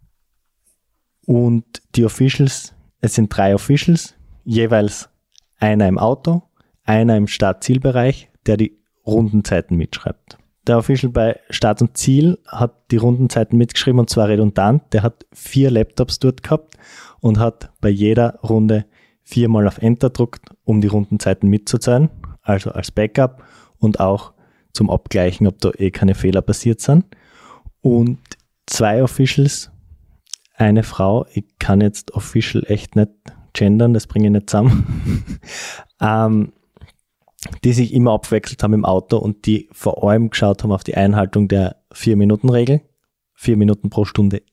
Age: 20-39